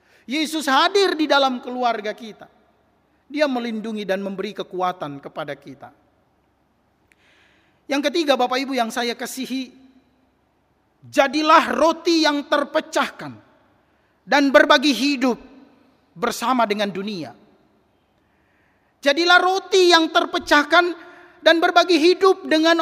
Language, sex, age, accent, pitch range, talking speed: Indonesian, male, 40-59, native, 260-320 Hz, 100 wpm